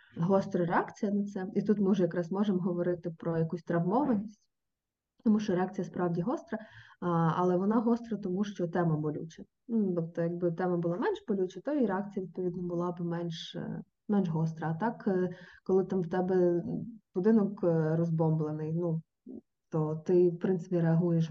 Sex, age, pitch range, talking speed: female, 20-39, 175-215 Hz, 160 wpm